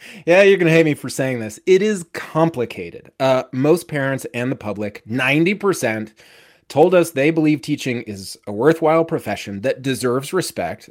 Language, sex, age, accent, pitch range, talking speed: English, male, 30-49, American, 115-170 Hz, 170 wpm